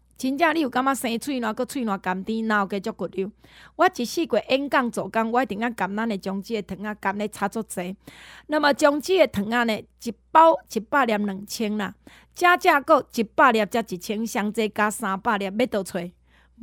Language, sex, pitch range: Chinese, female, 200-265 Hz